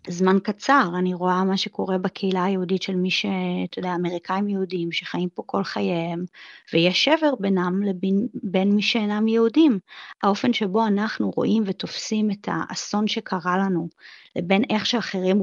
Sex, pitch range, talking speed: female, 180-220 Hz, 145 wpm